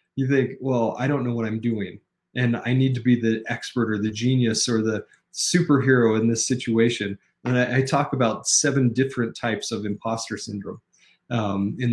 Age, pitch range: 30-49, 115-145 Hz